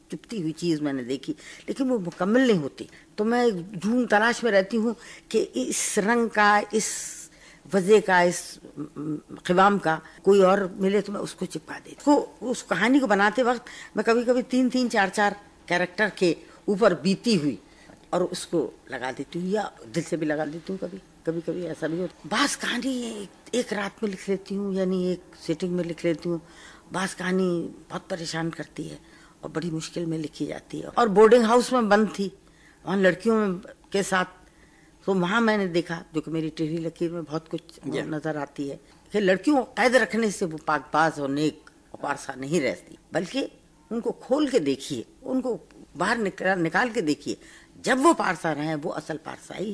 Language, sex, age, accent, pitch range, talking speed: Hindi, female, 60-79, native, 160-215 Hz, 190 wpm